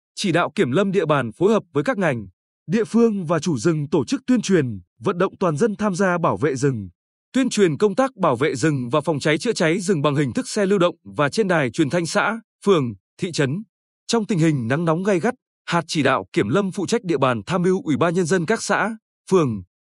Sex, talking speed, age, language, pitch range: male, 250 wpm, 20-39, Vietnamese, 145-200 Hz